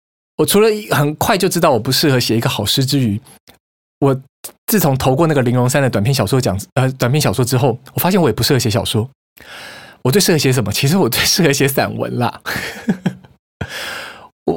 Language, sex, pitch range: Chinese, male, 110-145 Hz